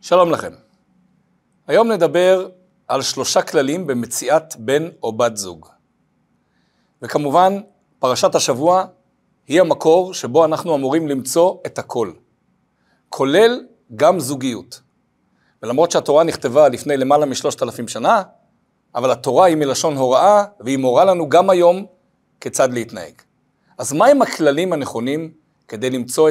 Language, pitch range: Hebrew, 145-195 Hz